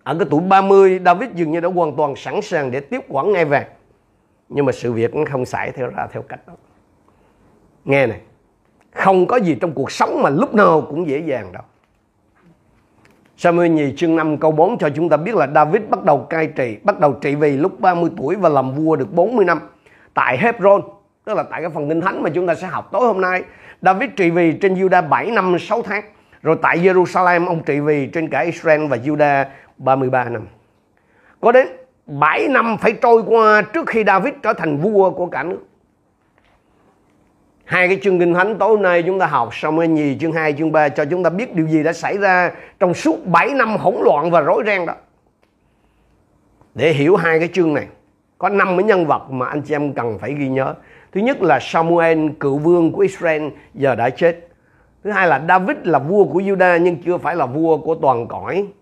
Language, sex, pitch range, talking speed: Vietnamese, male, 145-185 Hz, 210 wpm